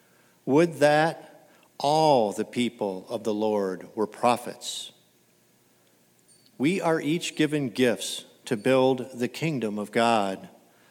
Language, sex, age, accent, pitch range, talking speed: English, male, 50-69, American, 115-150 Hz, 115 wpm